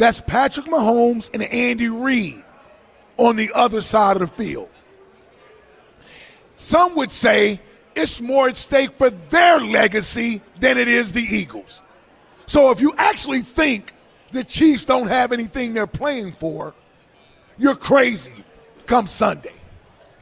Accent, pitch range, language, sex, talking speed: American, 210-260 Hz, English, male, 135 wpm